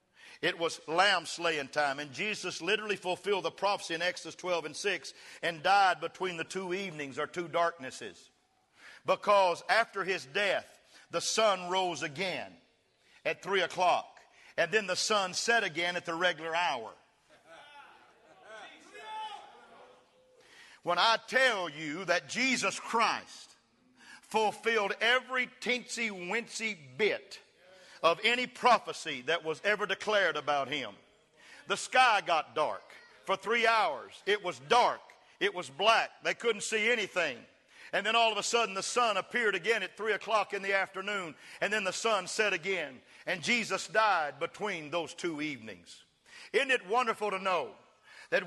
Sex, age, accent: male, 50-69, American